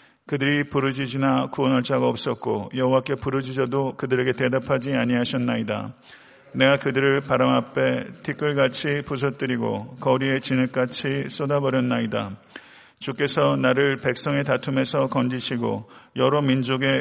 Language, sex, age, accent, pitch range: Korean, male, 40-59, native, 125-135 Hz